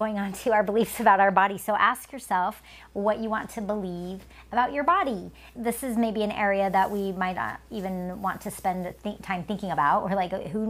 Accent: American